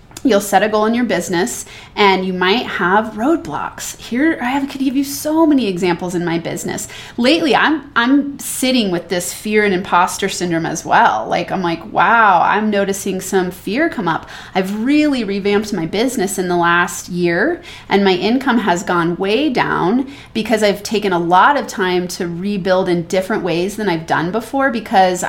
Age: 30-49